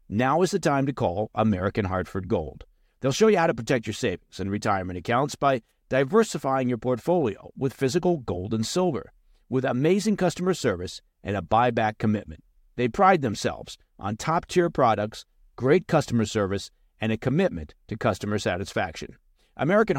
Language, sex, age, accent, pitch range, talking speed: English, male, 50-69, American, 105-160 Hz, 160 wpm